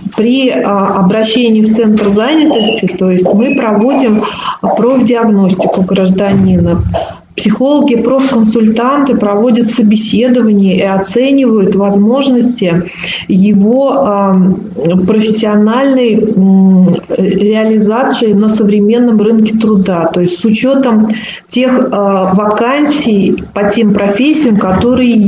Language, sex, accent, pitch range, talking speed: Russian, female, native, 195-235 Hz, 80 wpm